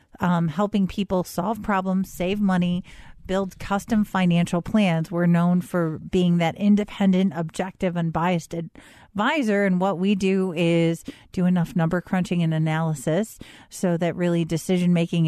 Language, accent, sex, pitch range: English, American, female, 170-200 Hz